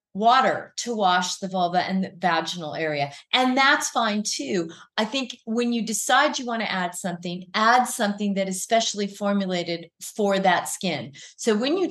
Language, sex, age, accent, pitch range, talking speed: English, female, 40-59, American, 195-245 Hz, 175 wpm